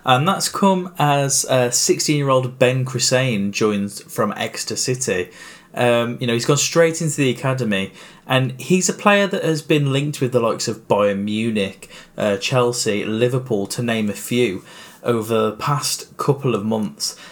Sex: male